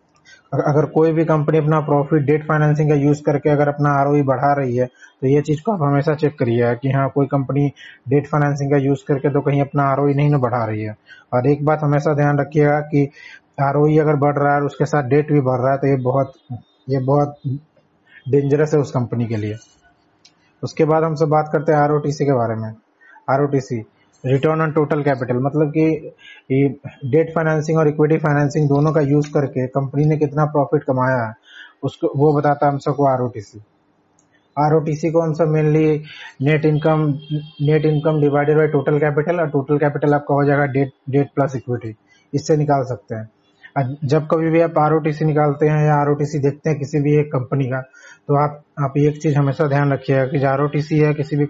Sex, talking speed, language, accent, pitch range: male, 205 wpm, Hindi, native, 135-150 Hz